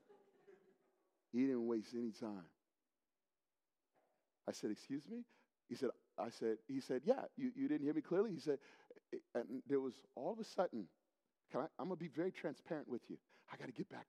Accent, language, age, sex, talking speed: American, English, 40-59, male, 195 wpm